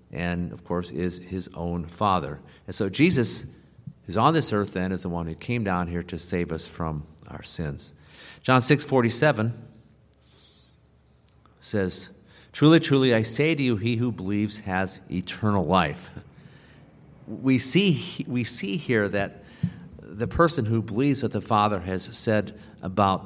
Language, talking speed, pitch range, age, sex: English, 155 wpm, 90-120 Hz, 50-69, male